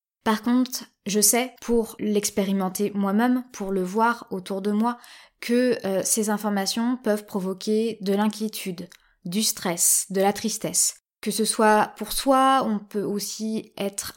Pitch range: 190-225 Hz